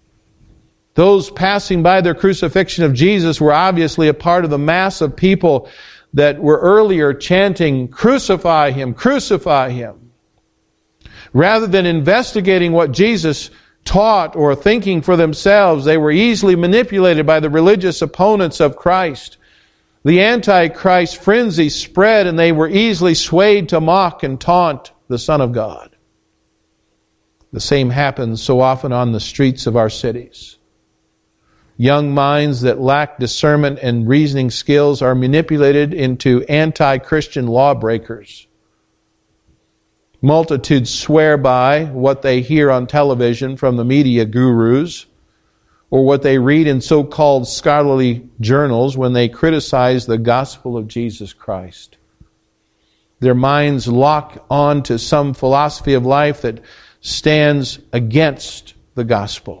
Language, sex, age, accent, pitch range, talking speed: English, male, 50-69, American, 125-170 Hz, 130 wpm